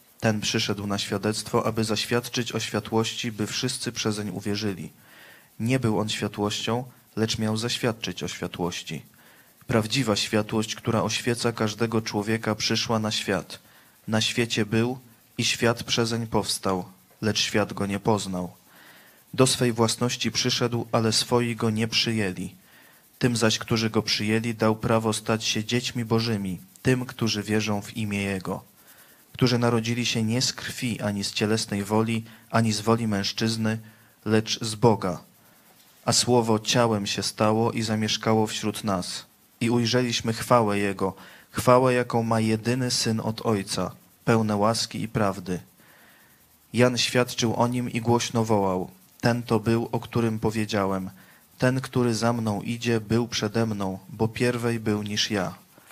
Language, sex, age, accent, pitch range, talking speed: Polish, male, 20-39, native, 105-120 Hz, 145 wpm